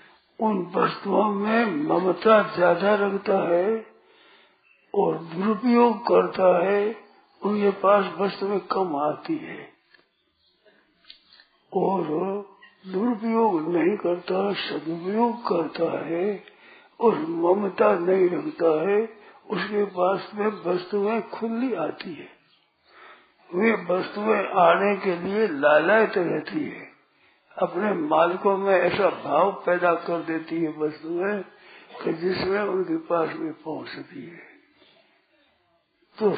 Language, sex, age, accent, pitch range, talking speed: Hindi, male, 50-69, native, 180-220 Hz, 100 wpm